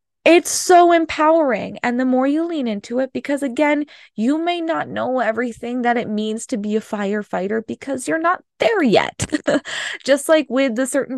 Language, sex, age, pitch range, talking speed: English, female, 20-39, 210-275 Hz, 185 wpm